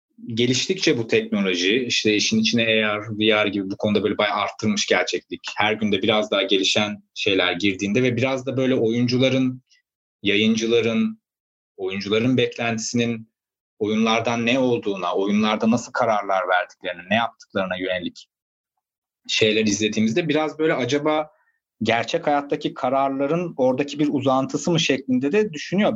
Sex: male